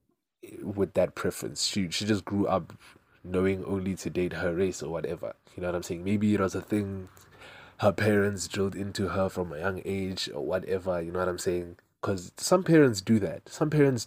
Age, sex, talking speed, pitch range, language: 20-39, male, 210 wpm, 90-110 Hz, English